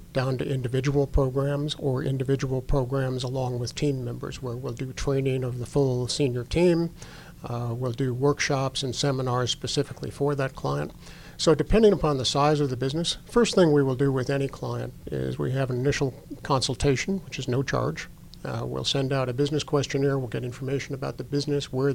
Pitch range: 130-145 Hz